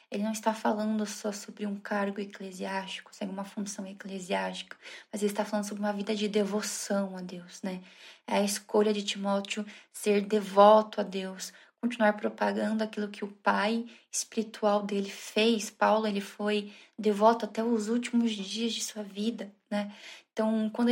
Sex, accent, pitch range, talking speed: female, Brazilian, 200-225 Hz, 160 wpm